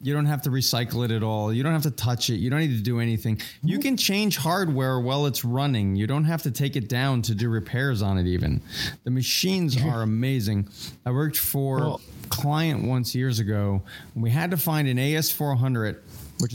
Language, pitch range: English, 115-150 Hz